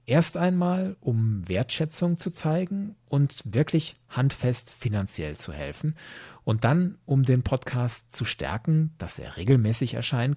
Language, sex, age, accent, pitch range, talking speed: German, male, 40-59, German, 110-145 Hz, 135 wpm